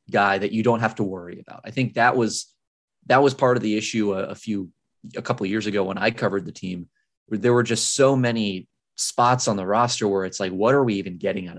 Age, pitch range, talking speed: 20-39, 100-120 Hz, 260 wpm